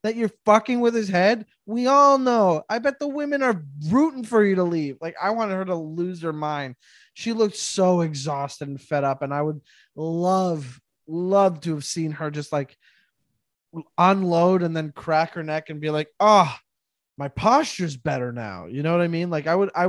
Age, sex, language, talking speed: 20-39, male, English, 205 wpm